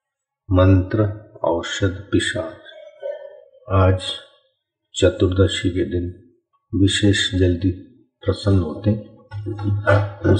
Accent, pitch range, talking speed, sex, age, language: native, 85-105 Hz, 70 wpm, male, 50-69, Hindi